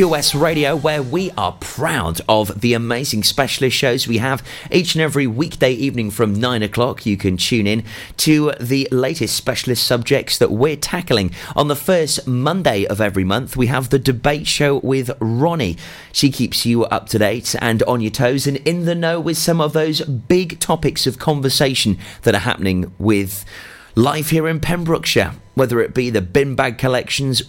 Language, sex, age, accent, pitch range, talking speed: English, male, 30-49, British, 110-140 Hz, 185 wpm